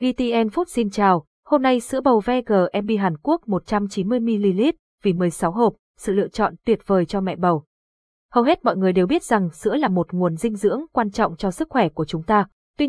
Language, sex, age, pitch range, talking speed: Vietnamese, female, 20-39, 190-240 Hz, 210 wpm